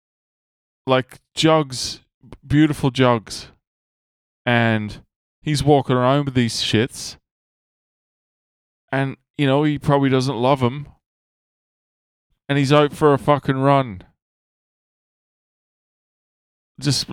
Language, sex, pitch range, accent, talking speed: English, male, 95-140 Hz, American, 95 wpm